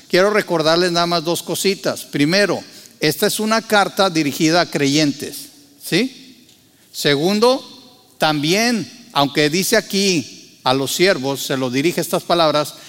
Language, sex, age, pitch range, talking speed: Spanish, male, 50-69, 145-200 Hz, 130 wpm